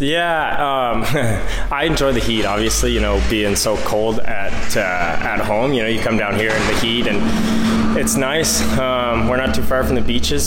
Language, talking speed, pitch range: English, 205 wpm, 100-115 Hz